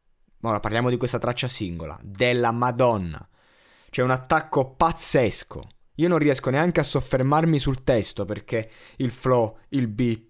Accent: native